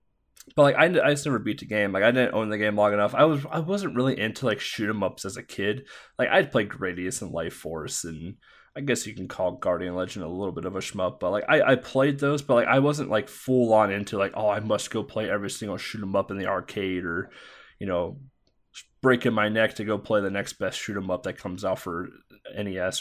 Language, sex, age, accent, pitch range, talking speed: English, male, 20-39, American, 100-130 Hz, 260 wpm